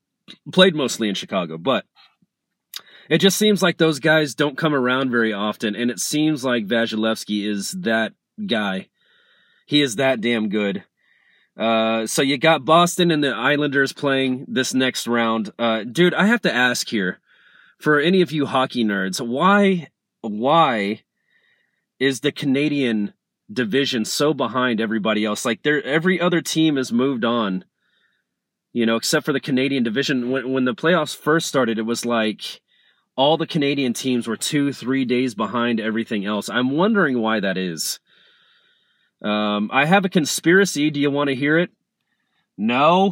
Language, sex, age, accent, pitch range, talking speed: English, male, 30-49, American, 120-165 Hz, 160 wpm